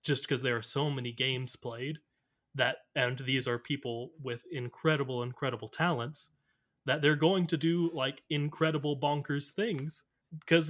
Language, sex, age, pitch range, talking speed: English, male, 30-49, 130-170 Hz, 150 wpm